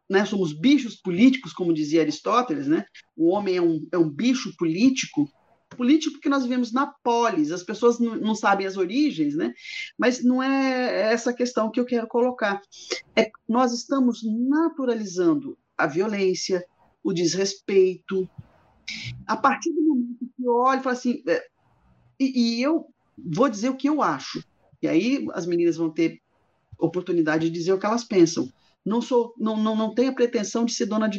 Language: Portuguese